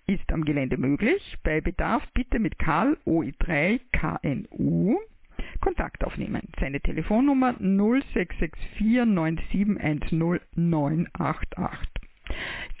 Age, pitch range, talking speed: 50-69, 165-225 Hz, 85 wpm